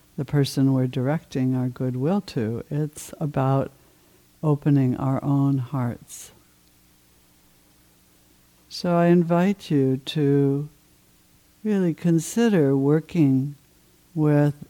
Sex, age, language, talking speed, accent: female, 60-79, English, 90 wpm, American